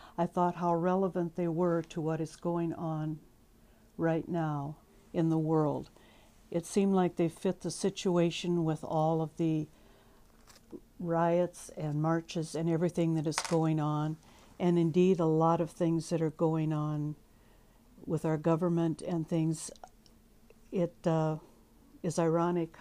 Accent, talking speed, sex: American, 145 wpm, female